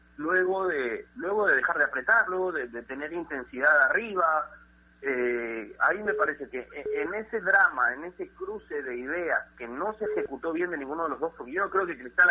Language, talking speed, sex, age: Spanish, 200 wpm, male, 40-59